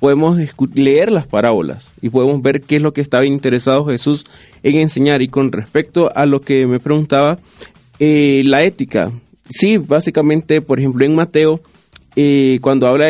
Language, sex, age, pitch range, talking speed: Spanish, male, 30-49, 135-165 Hz, 165 wpm